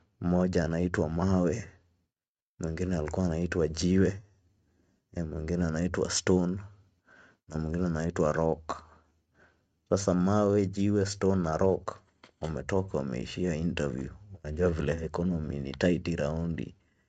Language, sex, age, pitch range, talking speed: Swahili, male, 30-49, 80-95 Hz, 90 wpm